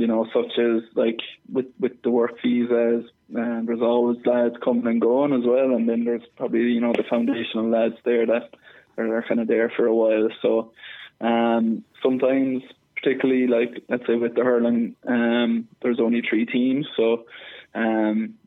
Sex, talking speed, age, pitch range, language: male, 175 wpm, 20-39, 115-120 Hz, English